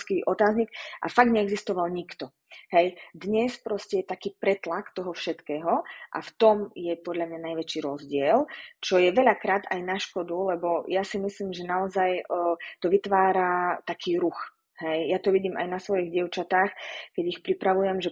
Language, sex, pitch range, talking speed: Slovak, female, 170-195 Hz, 160 wpm